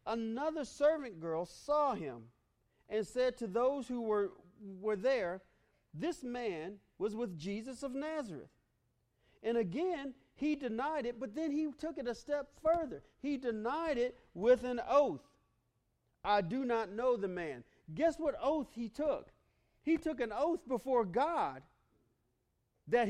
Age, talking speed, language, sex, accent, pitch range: 40-59, 150 wpm, English, male, American, 170-280 Hz